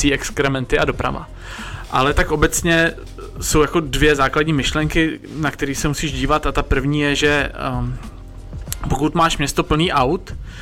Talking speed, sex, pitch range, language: 155 wpm, male, 125-150 Hz, Czech